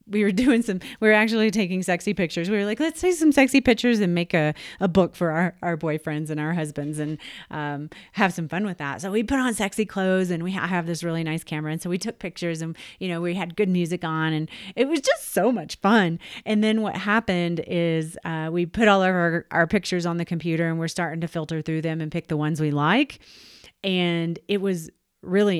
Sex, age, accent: female, 30-49, American